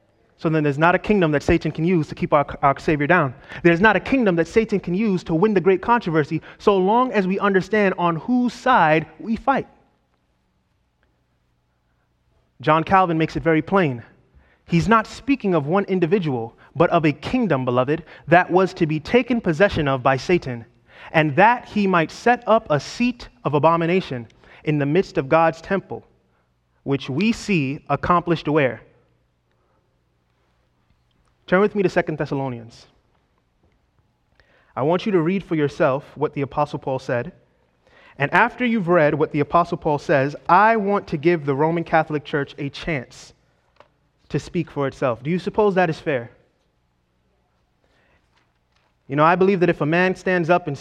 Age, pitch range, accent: 30-49, 140-185 Hz, American